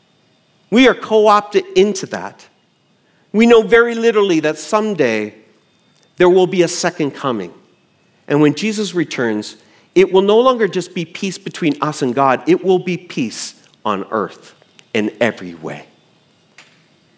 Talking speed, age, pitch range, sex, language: 145 wpm, 40-59, 125-190 Hz, male, English